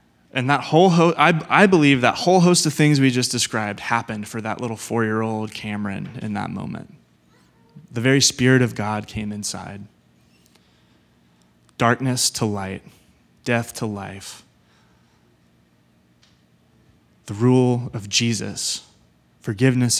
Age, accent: 20-39, American